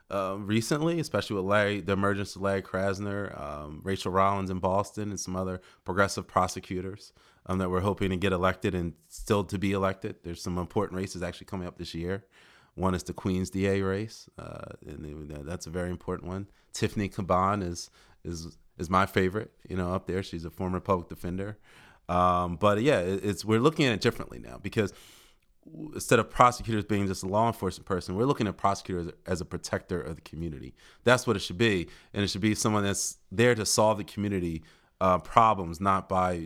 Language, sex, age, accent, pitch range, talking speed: English, male, 30-49, American, 85-100 Hz, 200 wpm